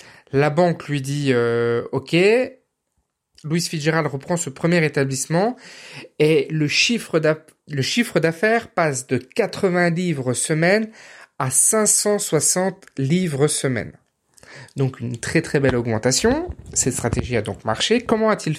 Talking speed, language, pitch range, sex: 135 wpm, French, 130-190 Hz, male